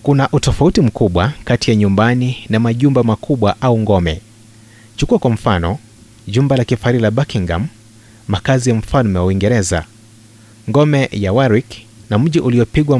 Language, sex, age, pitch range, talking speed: Swahili, male, 30-49, 105-120 Hz, 140 wpm